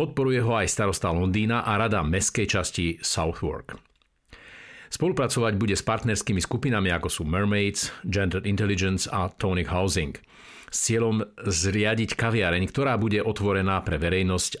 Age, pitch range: 50-69, 90-115 Hz